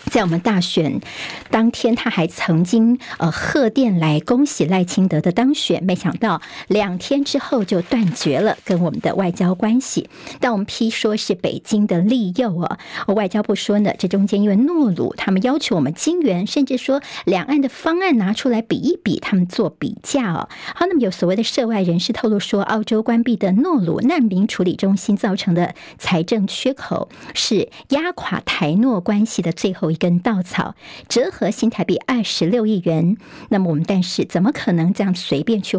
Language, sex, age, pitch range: Chinese, male, 50-69, 185-240 Hz